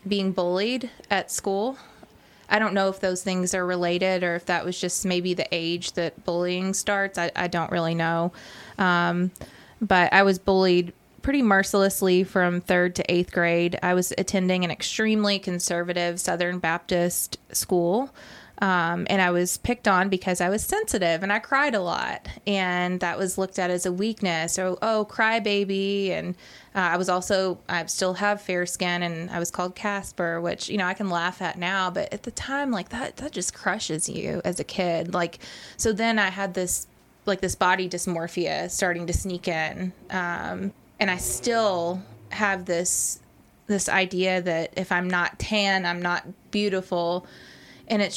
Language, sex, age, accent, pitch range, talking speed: English, female, 20-39, American, 180-200 Hz, 180 wpm